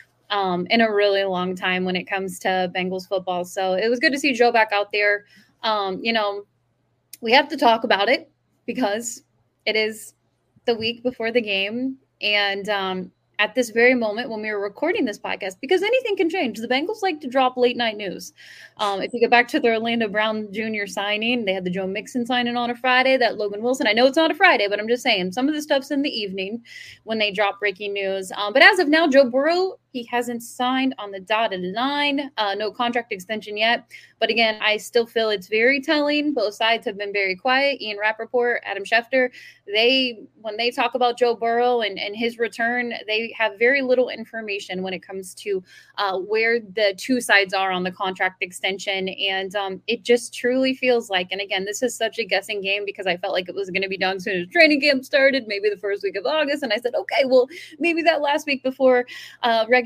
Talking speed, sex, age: 225 wpm, female, 20-39